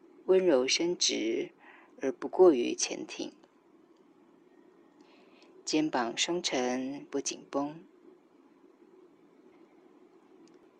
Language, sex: Chinese, female